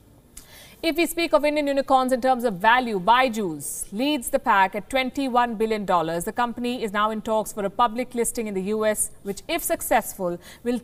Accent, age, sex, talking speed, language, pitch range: Indian, 50-69, female, 190 wpm, English, 210-260 Hz